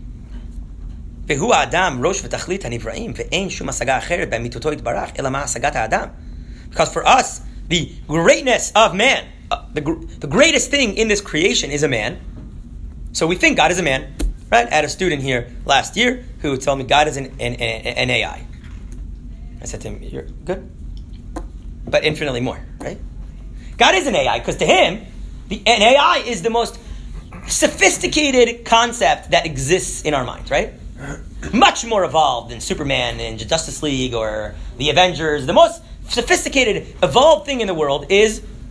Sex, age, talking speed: male, 30-49, 140 wpm